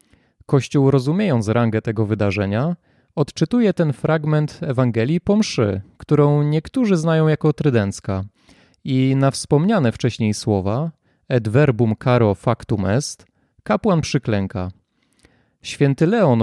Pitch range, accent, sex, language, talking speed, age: 110-155 Hz, native, male, Polish, 105 wpm, 30-49